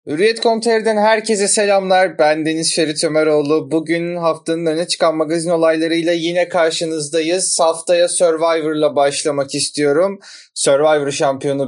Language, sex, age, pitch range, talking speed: Turkish, male, 20-39, 135-165 Hz, 115 wpm